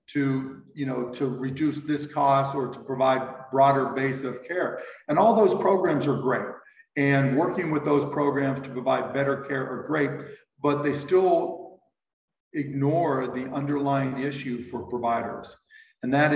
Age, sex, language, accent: 50-69, male, English, American